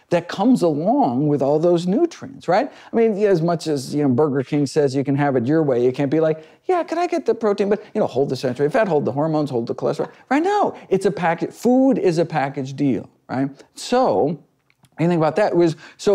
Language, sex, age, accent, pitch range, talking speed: English, male, 50-69, American, 145-190 Hz, 240 wpm